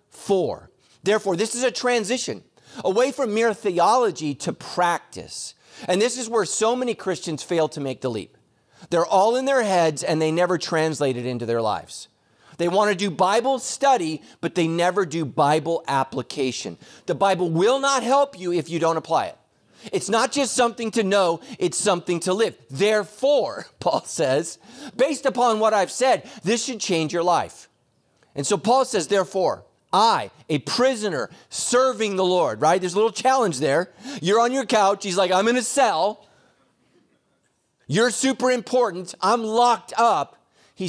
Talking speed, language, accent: 170 wpm, English, American